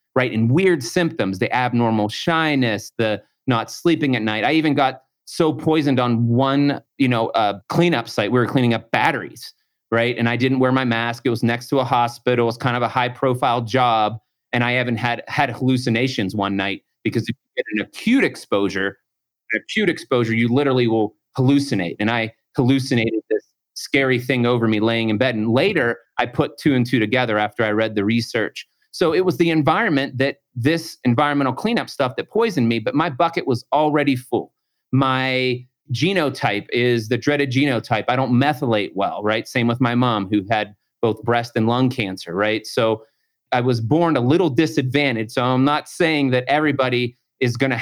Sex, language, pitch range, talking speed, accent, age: male, English, 115-135 Hz, 190 wpm, American, 30-49